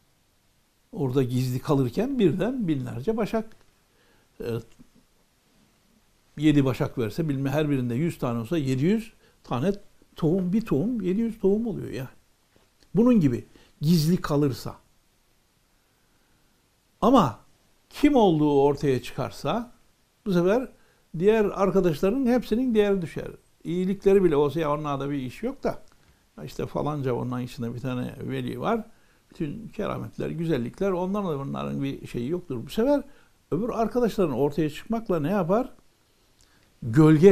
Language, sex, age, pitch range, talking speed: Turkish, male, 60-79, 120-190 Hz, 120 wpm